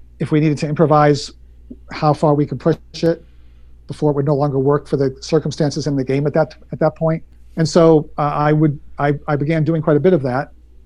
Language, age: English, 40-59